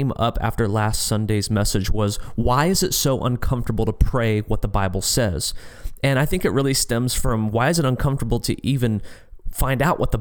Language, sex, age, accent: English, male, 30-49, American